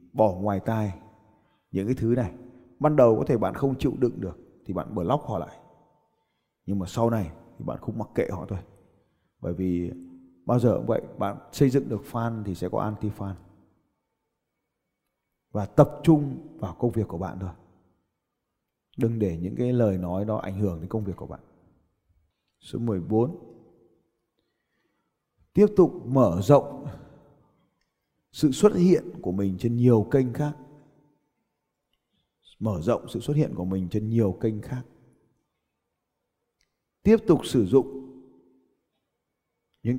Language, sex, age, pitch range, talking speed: Vietnamese, male, 20-39, 95-135 Hz, 150 wpm